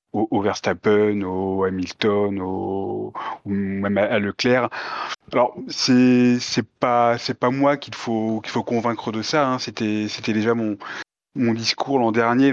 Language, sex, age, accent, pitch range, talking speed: French, male, 30-49, French, 105-130 Hz, 155 wpm